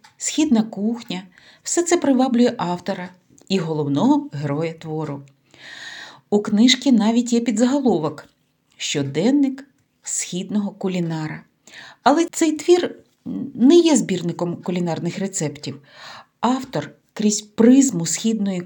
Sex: female